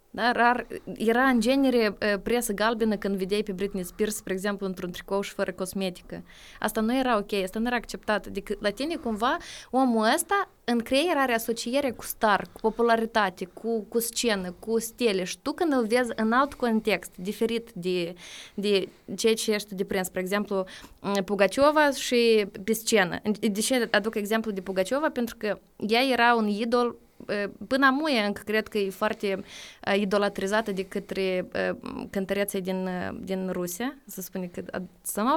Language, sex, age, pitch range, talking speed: Romanian, female, 20-39, 195-235 Hz, 160 wpm